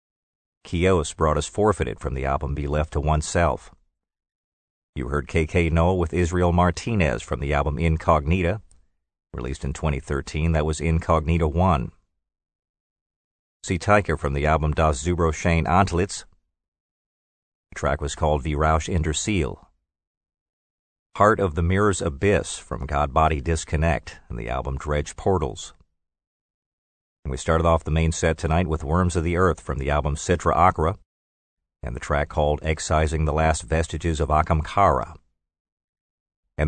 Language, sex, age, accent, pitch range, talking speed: English, male, 50-69, American, 75-90 Hz, 140 wpm